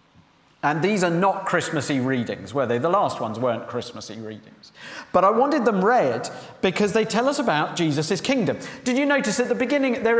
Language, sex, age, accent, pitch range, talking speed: English, male, 50-69, British, 155-235 Hz, 195 wpm